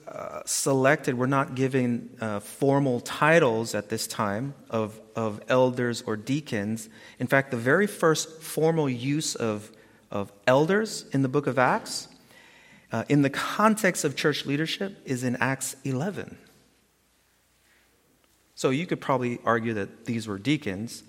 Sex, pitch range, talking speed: male, 110-145 Hz, 145 wpm